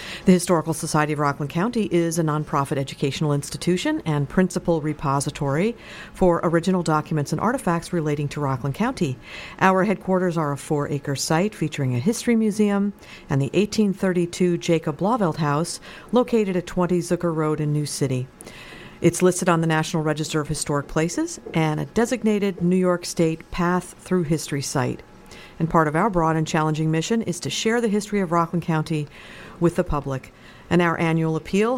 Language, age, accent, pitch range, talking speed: English, 50-69, American, 150-185 Hz, 170 wpm